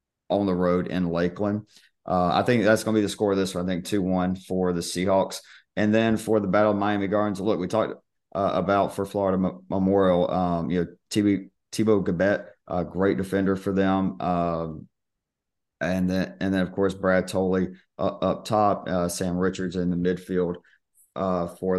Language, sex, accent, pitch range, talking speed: English, male, American, 90-100 Hz, 200 wpm